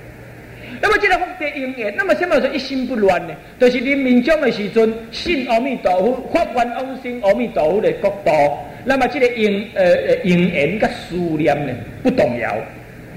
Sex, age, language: male, 50-69, Chinese